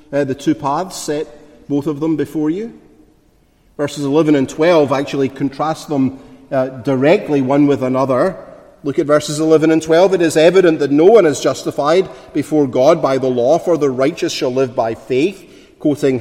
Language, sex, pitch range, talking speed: English, male, 135-180 Hz, 180 wpm